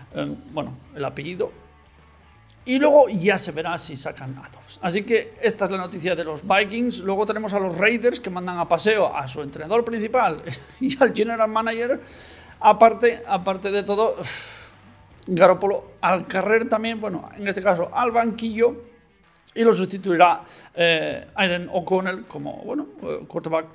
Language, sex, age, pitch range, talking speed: Spanish, male, 40-59, 165-220 Hz, 150 wpm